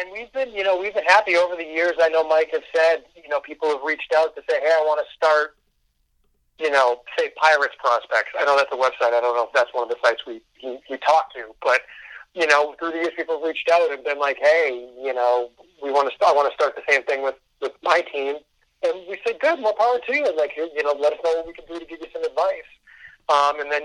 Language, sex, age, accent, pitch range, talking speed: English, male, 30-49, American, 135-170 Hz, 280 wpm